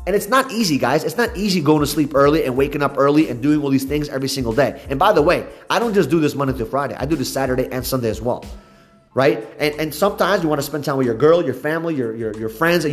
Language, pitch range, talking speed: English, 130-190 Hz, 290 wpm